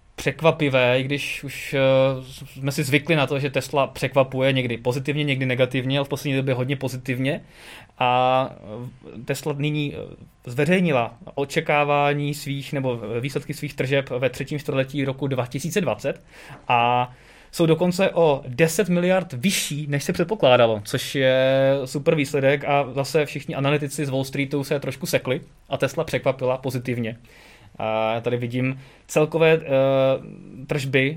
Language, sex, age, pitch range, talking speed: Czech, male, 20-39, 125-145 Hz, 135 wpm